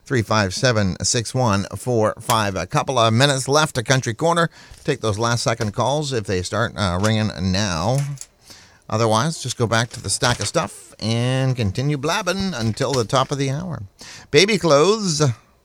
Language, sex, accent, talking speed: English, male, American, 175 wpm